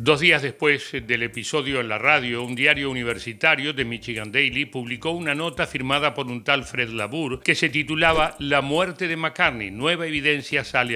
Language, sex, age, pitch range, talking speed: Spanish, male, 60-79, 125-165 Hz, 180 wpm